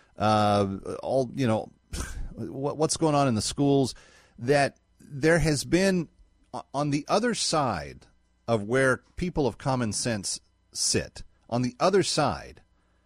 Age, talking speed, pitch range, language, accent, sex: 40-59, 135 wpm, 105-150 Hz, English, American, male